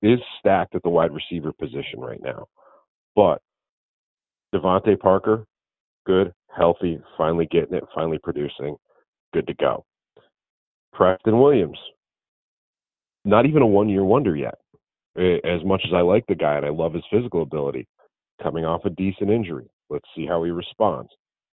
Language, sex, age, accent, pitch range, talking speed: English, male, 40-59, American, 85-100 Hz, 150 wpm